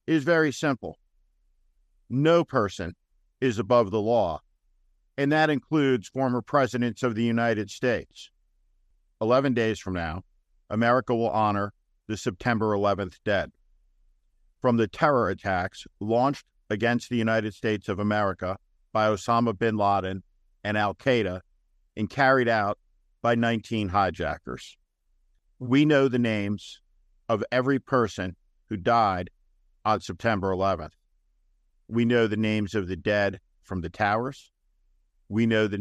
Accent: American